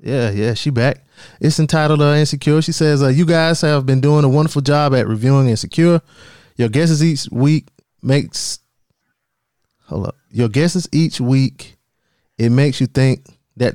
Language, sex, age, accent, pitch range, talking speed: English, male, 20-39, American, 115-145 Hz, 165 wpm